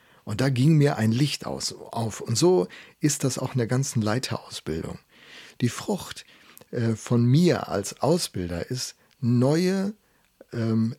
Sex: male